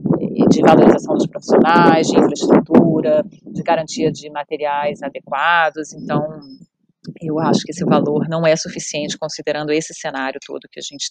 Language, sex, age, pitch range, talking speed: Portuguese, female, 30-49, 155-190 Hz, 145 wpm